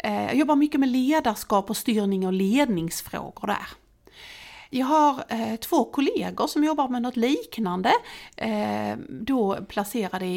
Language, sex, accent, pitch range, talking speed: Swedish, female, native, 195-280 Hz, 120 wpm